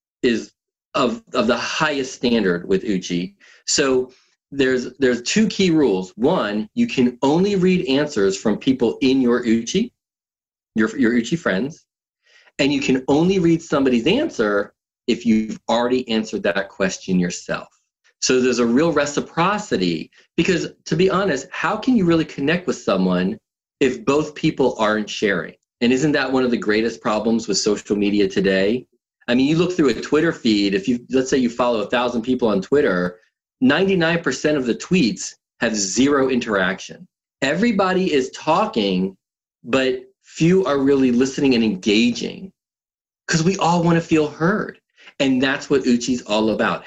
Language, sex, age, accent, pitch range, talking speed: English, male, 40-59, American, 115-180 Hz, 160 wpm